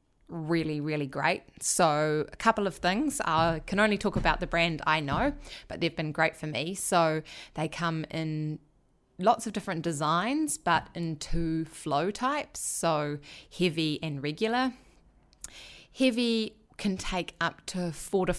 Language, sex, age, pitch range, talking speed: English, female, 20-39, 155-190 Hz, 155 wpm